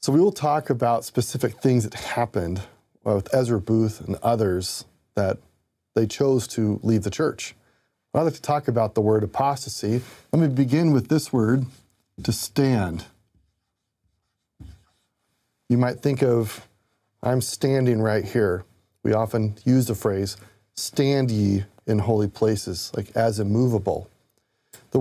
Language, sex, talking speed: English, male, 140 wpm